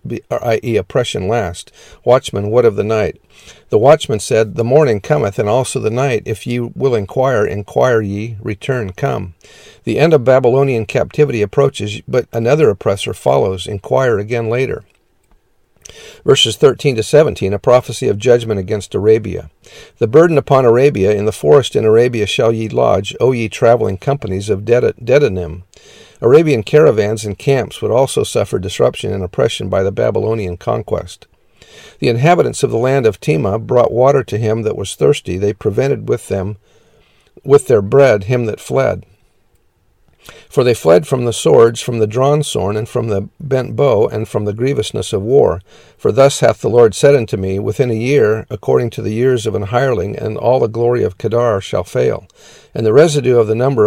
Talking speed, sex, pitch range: 175 wpm, male, 105-130 Hz